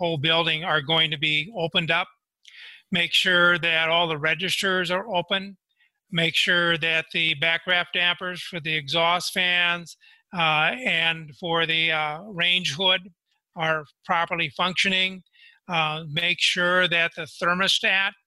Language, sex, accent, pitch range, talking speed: English, male, American, 165-195 Hz, 140 wpm